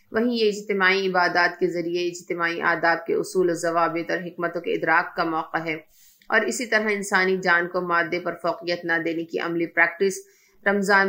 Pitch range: 170-195 Hz